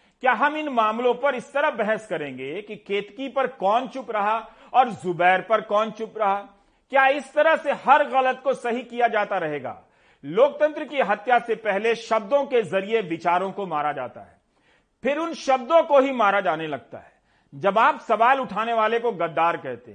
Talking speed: 185 wpm